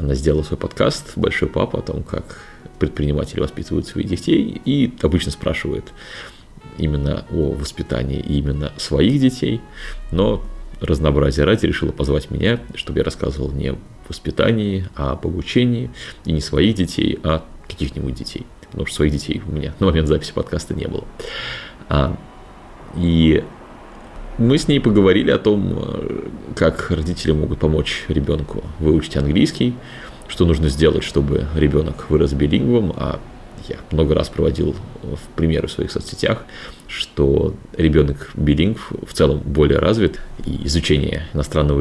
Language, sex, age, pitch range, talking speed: Russian, male, 30-49, 70-85 Hz, 135 wpm